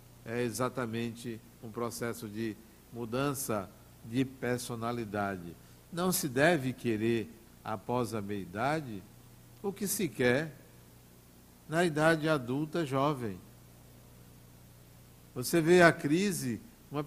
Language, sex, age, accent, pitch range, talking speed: Portuguese, male, 60-79, Brazilian, 100-150 Hz, 100 wpm